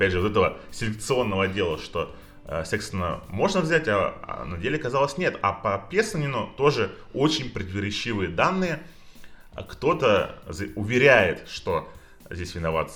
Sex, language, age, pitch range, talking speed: male, Russian, 20-39, 100-150 Hz, 135 wpm